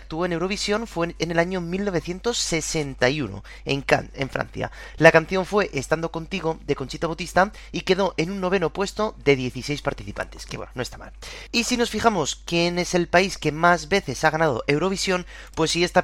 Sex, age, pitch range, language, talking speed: male, 30-49, 140-180 Hz, Spanish, 190 wpm